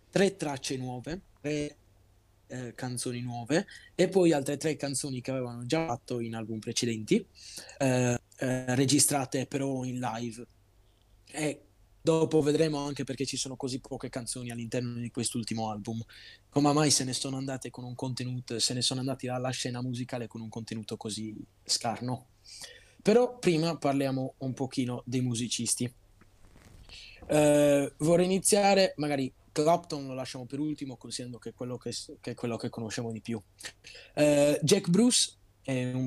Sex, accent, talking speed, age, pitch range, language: male, native, 150 wpm, 20-39, 115-140 Hz, Italian